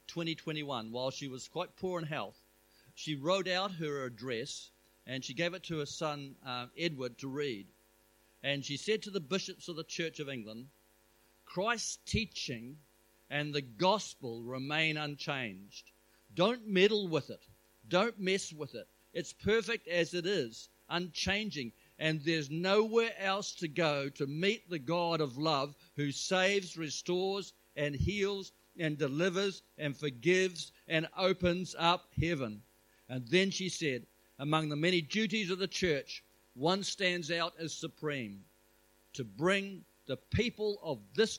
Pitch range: 115-170 Hz